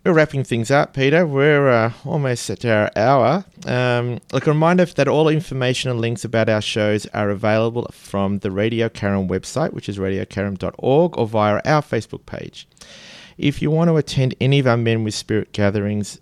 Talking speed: 185 wpm